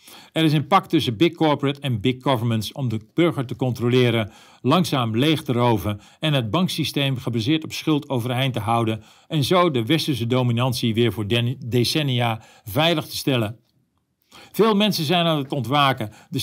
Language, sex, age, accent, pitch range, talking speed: Dutch, male, 50-69, Dutch, 120-160 Hz, 170 wpm